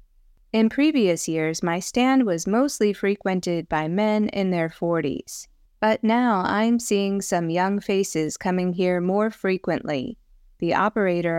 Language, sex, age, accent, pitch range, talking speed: English, female, 20-39, American, 165-205 Hz, 135 wpm